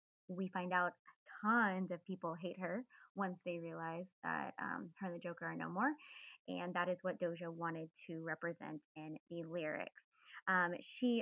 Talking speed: 175 wpm